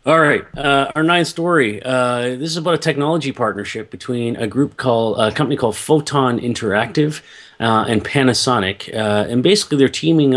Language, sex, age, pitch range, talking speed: English, male, 30-49, 100-120 Hz, 175 wpm